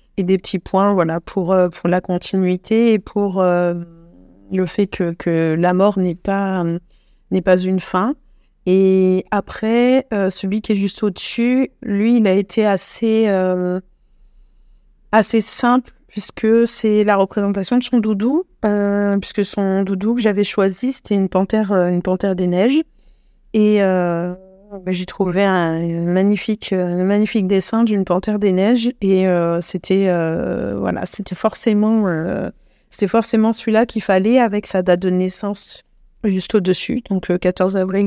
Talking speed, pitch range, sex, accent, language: 160 wpm, 185-220 Hz, female, French, French